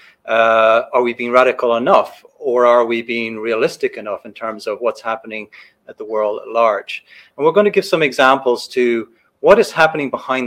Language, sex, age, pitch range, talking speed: English, male, 30-49, 115-135 Hz, 195 wpm